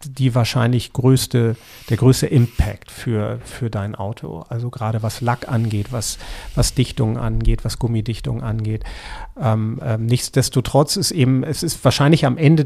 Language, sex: German, male